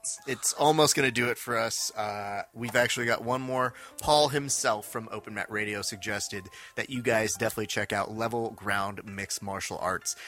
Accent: American